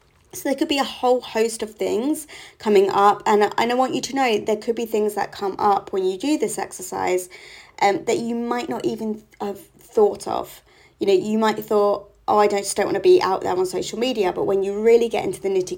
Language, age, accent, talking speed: English, 20-39, British, 255 wpm